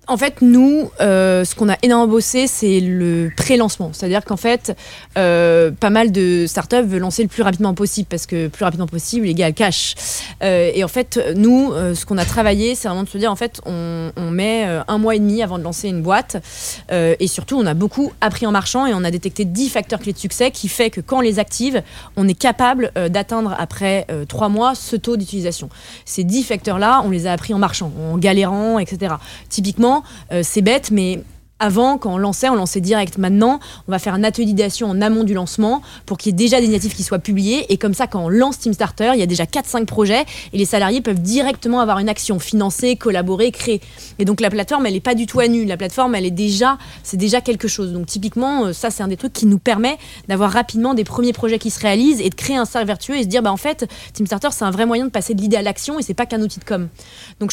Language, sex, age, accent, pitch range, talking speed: French, female, 20-39, French, 190-235 Hz, 250 wpm